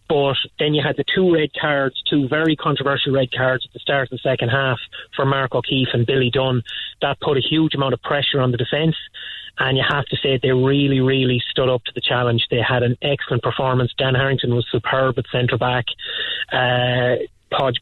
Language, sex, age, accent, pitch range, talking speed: English, male, 30-49, Irish, 130-145 Hz, 210 wpm